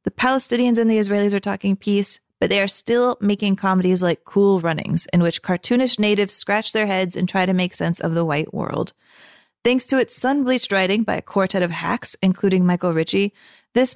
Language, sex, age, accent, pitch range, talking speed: English, female, 30-49, American, 180-225 Hz, 200 wpm